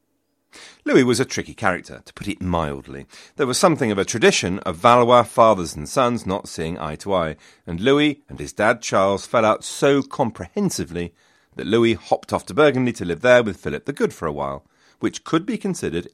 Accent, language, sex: British, English, male